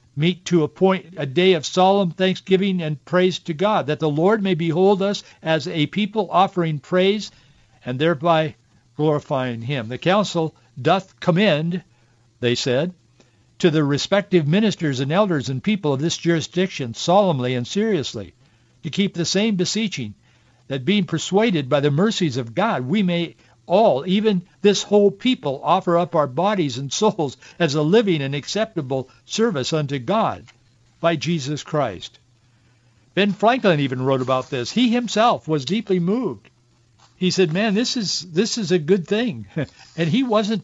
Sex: male